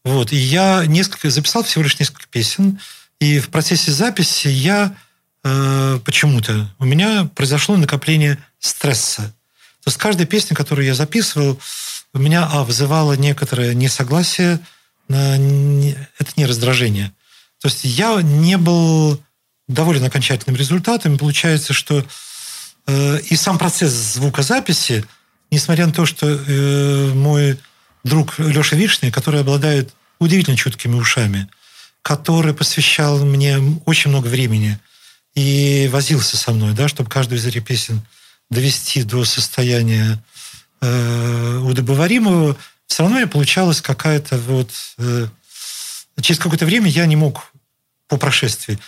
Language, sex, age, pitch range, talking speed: Russian, male, 40-59, 130-160 Hz, 130 wpm